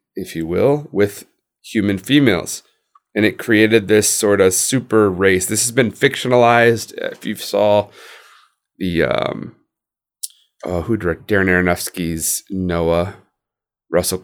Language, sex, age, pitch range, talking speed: English, male, 30-49, 90-115 Hz, 125 wpm